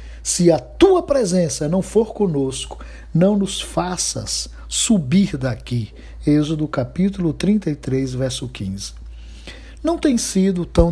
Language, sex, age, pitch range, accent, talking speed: Portuguese, male, 60-79, 135-200 Hz, Brazilian, 115 wpm